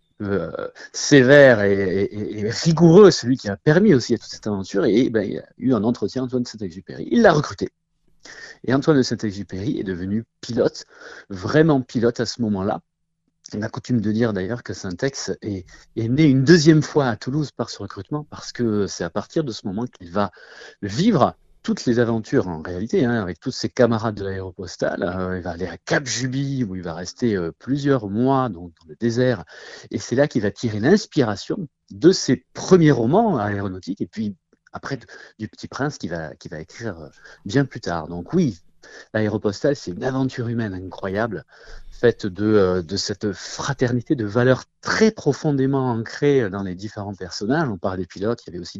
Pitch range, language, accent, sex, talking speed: 100-135 Hz, French, French, male, 190 wpm